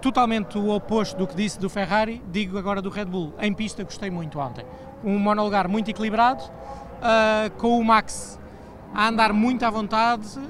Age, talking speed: 20-39, 170 wpm